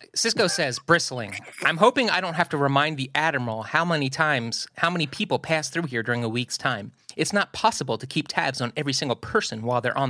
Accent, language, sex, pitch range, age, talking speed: American, English, male, 140-215 Hz, 30-49, 225 wpm